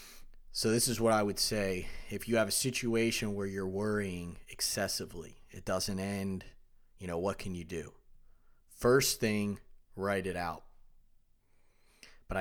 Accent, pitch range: American, 95-110 Hz